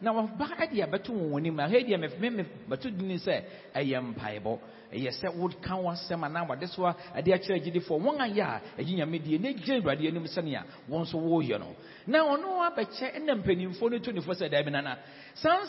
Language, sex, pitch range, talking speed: English, male, 175-260 Hz, 135 wpm